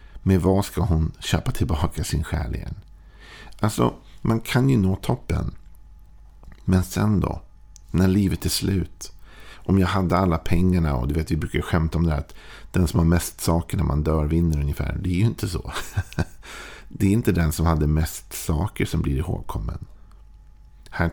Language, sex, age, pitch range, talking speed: Swedish, male, 50-69, 80-95 Hz, 180 wpm